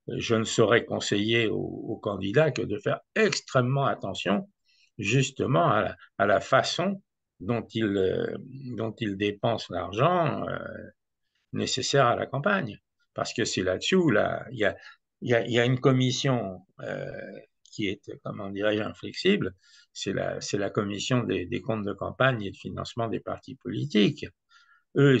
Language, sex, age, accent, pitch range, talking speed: French, male, 60-79, French, 105-135 Hz, 140 wpm